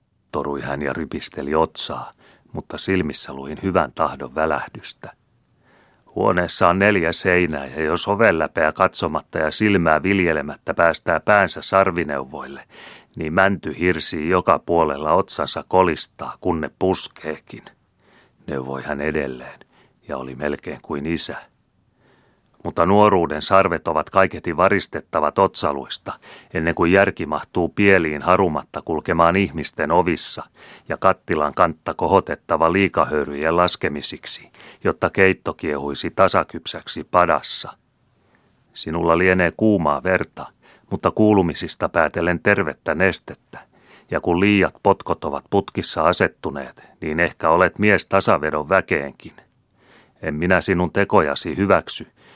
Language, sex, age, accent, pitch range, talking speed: Finnish, male, 40-59, native, 75-95 Hz, 110 wpm